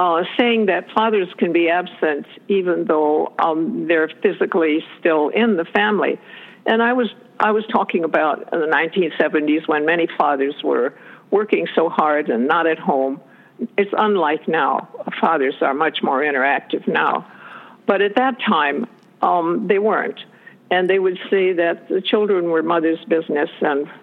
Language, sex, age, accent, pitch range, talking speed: English, female, 60-79, American, 170-230 Hz, 155 wpm